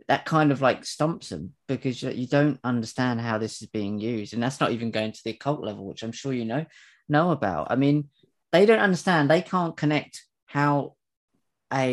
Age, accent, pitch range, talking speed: 30-49, British, 110-140 Hz, 205 wpm